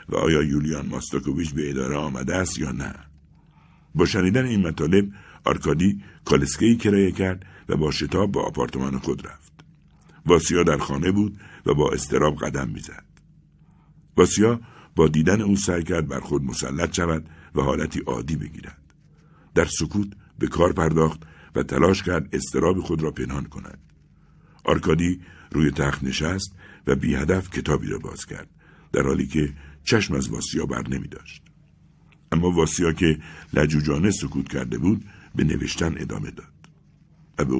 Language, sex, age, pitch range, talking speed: Persian, male, 60-79, 75-100 Hz, 150 wpm